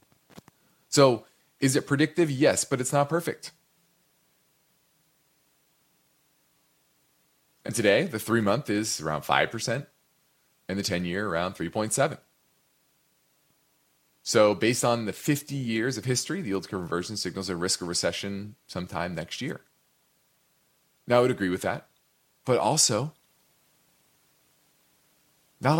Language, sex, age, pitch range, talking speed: English, male, 30-49, 105-140 Hz, 115 wpm